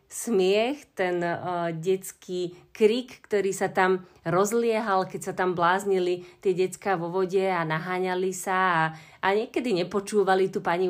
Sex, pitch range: female, 180-205 Hz